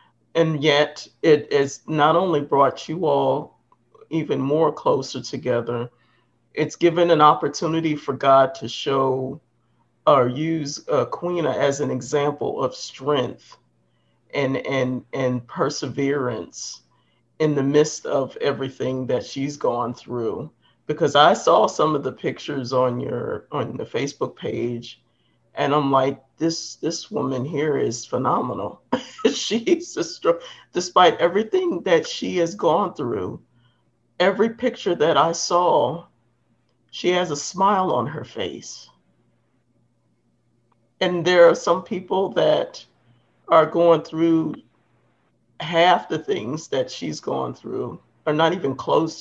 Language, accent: English, American